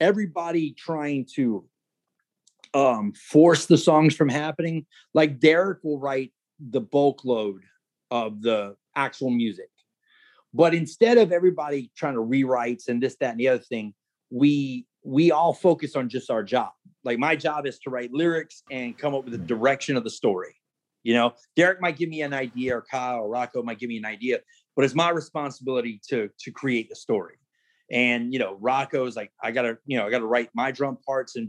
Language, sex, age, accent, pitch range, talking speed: English, male, 30-49, American, 125-160 Hz, 190 wpm